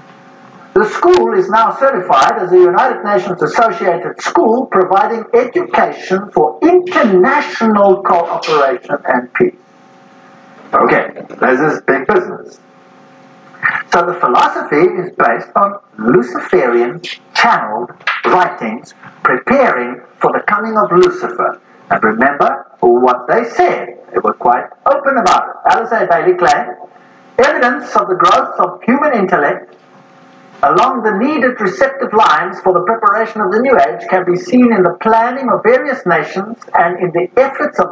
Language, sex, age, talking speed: English, male, 50-69, 135 wpm